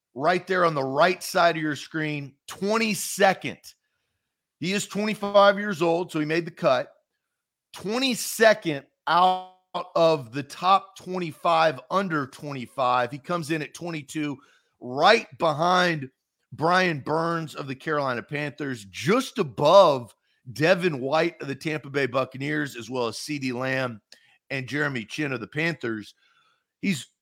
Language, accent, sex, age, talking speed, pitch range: English, American, male, 40-59, 135 wpm, 130-180 Hz